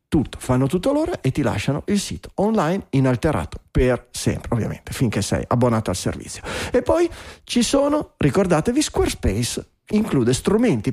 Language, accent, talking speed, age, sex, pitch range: Italian, native, 150 wpm, 40-59, male, 115-150 Hz